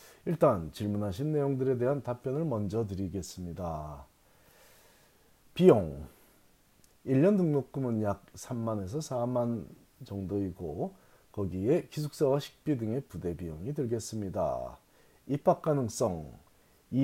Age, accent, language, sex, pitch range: 40-59, native, Korean, male, 95-135 Hz